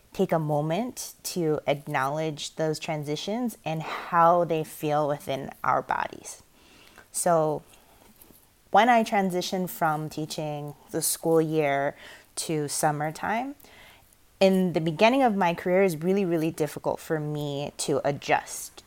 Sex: female